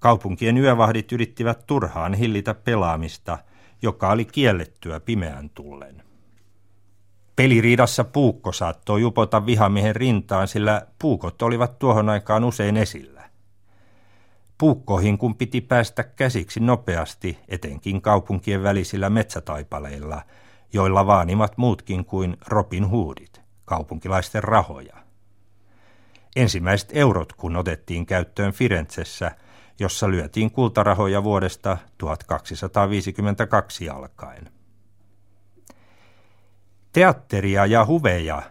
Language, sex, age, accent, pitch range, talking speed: Finnish, male, 60-79, native, 95-110 Hz, 90 wpm